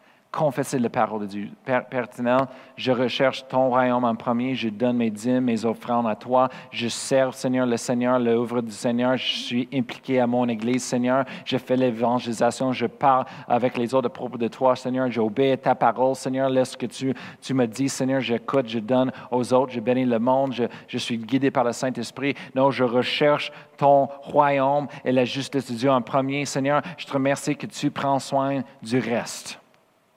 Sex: male